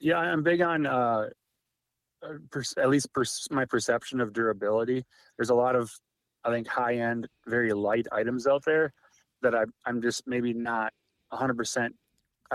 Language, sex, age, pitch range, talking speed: English, male, 30-49, 110-125 Hz, 155 wpm